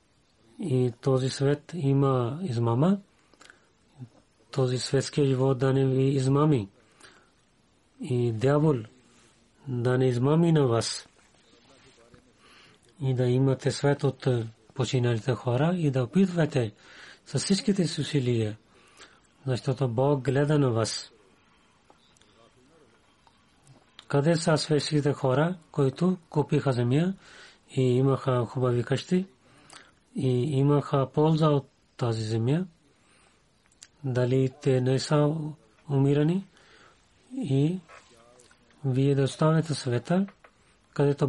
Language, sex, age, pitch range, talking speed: Bulgarian, male, 30-49, 125-150 Hz, 95 wpm